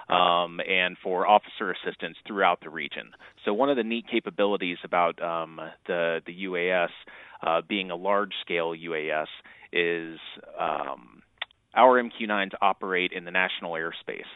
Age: 30-49